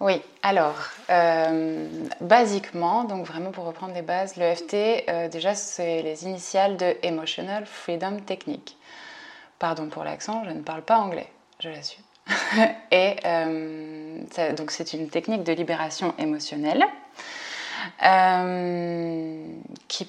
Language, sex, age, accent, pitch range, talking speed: French, female, 20-39, French, 165-195 Hz, 130 wpm